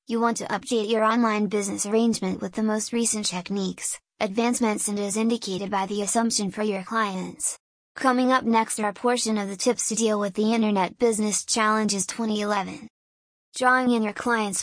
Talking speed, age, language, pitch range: 180 wpm, 10-29, English, 205-235 Hz